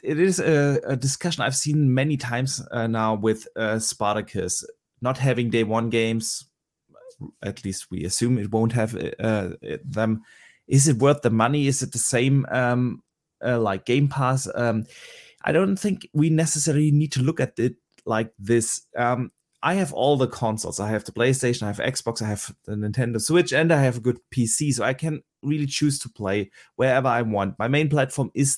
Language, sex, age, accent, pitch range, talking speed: English, male, 30-49, German, 115-150 Hz, 195 wpm